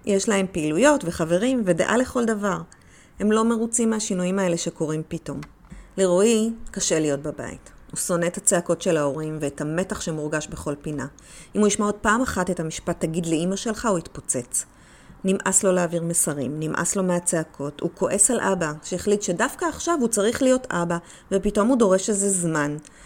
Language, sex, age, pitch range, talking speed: Hebrew, female, 30-49, 165-215 Hz, 170 wpm